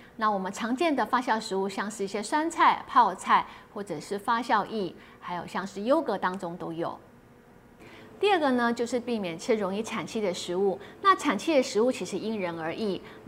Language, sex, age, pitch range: Chinese, female, 30-49, 195-255 Hz